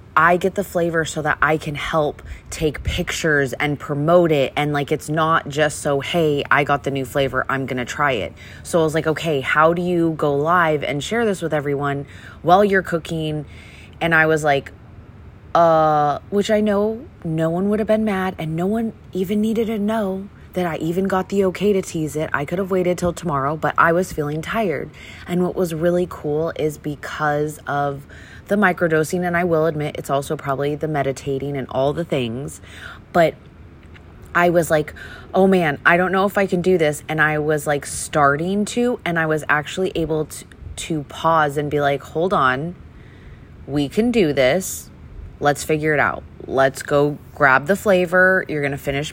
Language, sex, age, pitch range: English, female, 20-39, 145-180 Hz